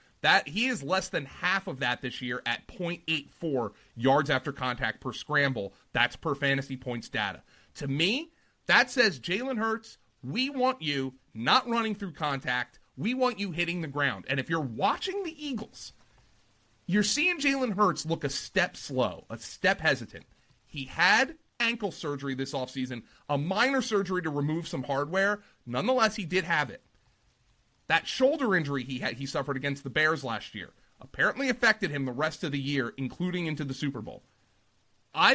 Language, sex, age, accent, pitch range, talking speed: English, male, 30-49, American, 130-190 Hz, 175 wpm